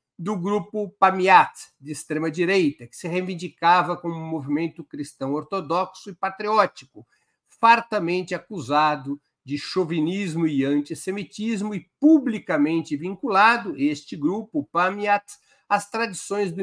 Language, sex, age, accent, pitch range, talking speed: Portuguese, male, 60-79, Brazilian, 150-200 Hz, 110 wpm